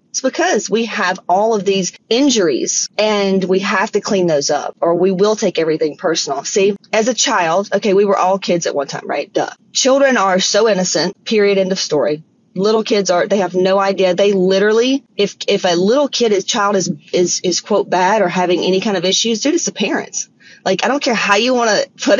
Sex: female